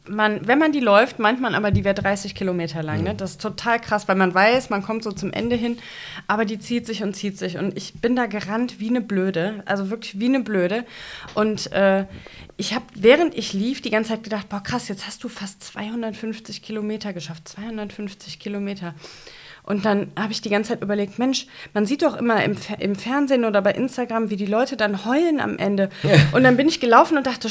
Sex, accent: female, German